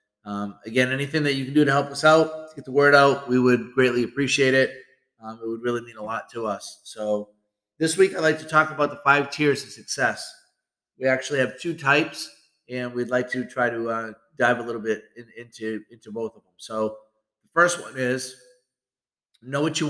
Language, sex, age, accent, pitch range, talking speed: English, male, 30-49, American, 115-135 Hz, 215 wpm